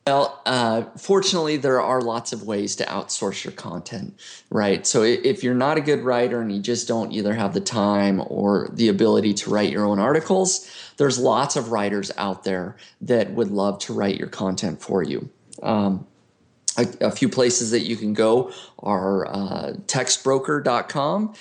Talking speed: 175 wpm